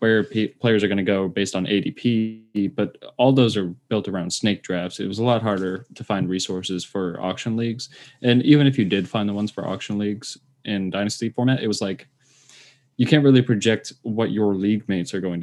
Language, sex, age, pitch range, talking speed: English, male, 20-39, 95-115 Hz, 215 wpm